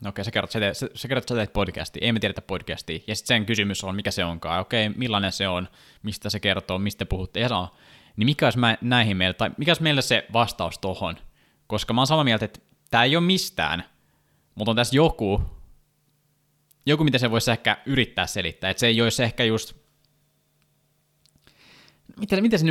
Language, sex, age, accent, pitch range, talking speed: Finnish, male, 20-39, native, 100-125 Hz, 180 wpm